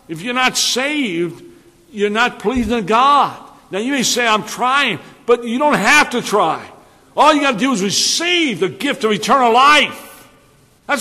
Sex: male